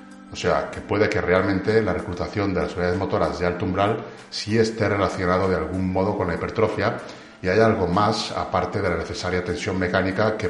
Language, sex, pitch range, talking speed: Spanish, male, 90-110 Hz, 200 wpm